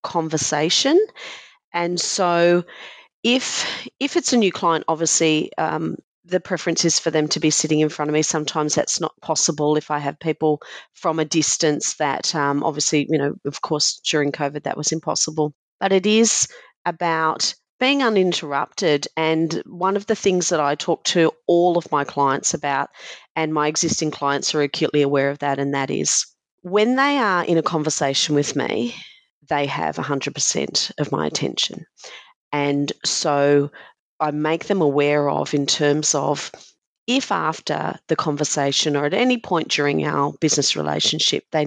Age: 40-59